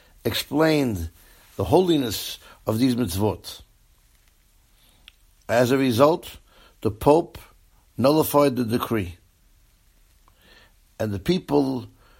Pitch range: 95-140 Hz